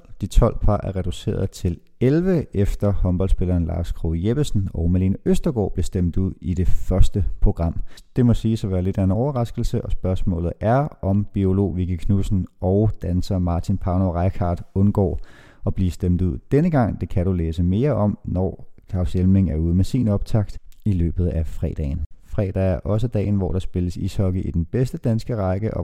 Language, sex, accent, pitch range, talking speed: Danish, male, native, 90-110 Hz, 190 wpm